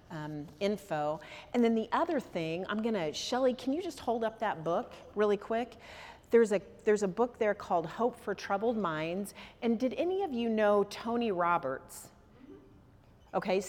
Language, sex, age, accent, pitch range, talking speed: English, female, 40-59, American, 150-205 Hz, 170 wpm